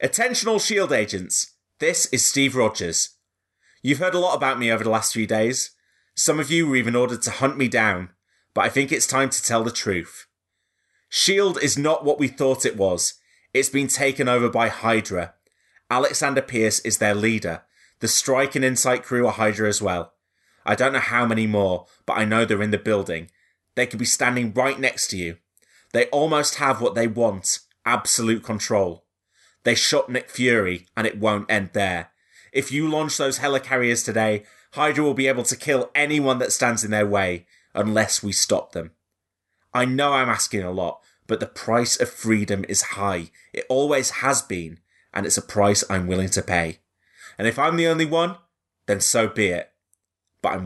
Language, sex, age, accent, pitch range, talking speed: English, male, 20-39, British, 100-135 Hz, 195 wpm